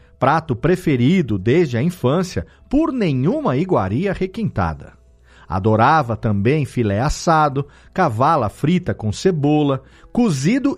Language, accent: Portuguese, Brazilian